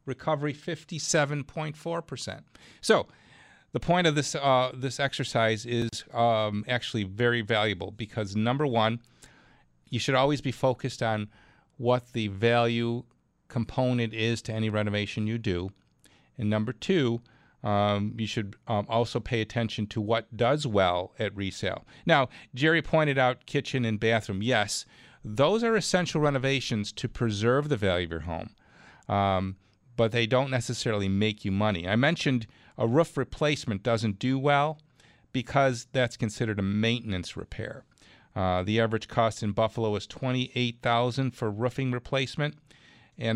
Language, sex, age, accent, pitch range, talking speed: English, male, 40-59, American, 105-130 Hz, 145 wpm